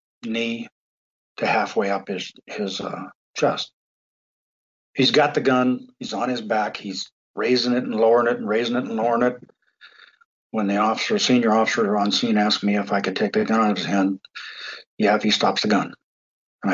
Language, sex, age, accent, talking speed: English, male, 50-69, American, 190 wpm